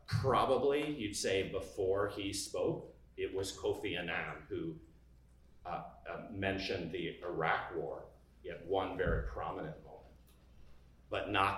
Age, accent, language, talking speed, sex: 40-59, American, English, 125 wpm, male